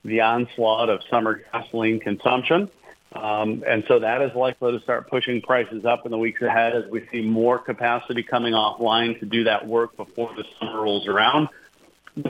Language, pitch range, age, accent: English, 115-145 Hz, 40-59, American